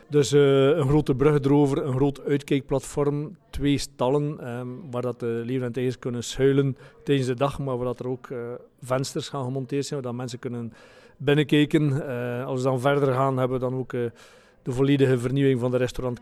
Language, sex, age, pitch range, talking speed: Dutch, male, 40-59, 125-140 Hz, 200 wpm